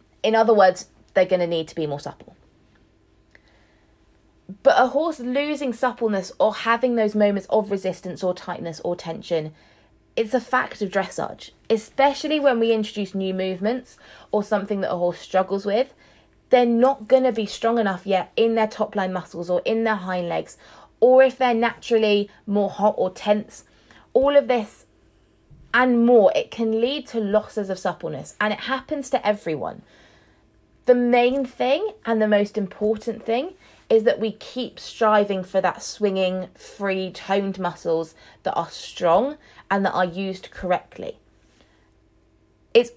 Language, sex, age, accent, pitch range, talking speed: English, female, 20-39, British, 185-230 Hz, 160 wpm